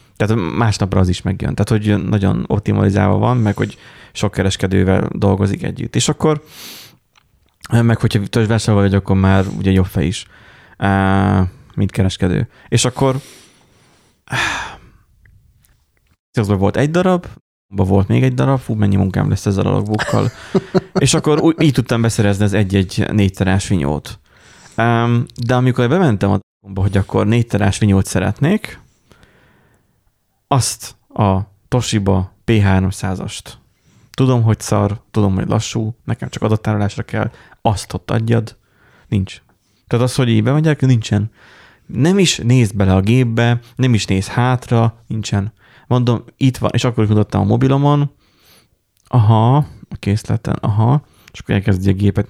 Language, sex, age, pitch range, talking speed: Hungarian, male, 20-39, 100-125 Hz, 135 wpm